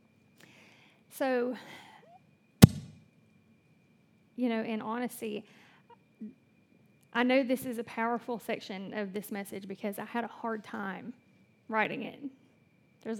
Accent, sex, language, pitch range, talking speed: American, female, English, 215-260 Hz, 110 wpm